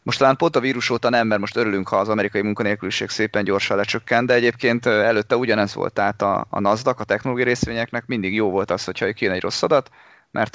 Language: Hungarian